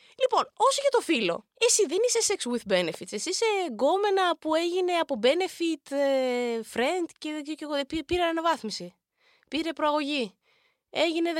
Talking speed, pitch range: 145 wpm, 225-340 Hz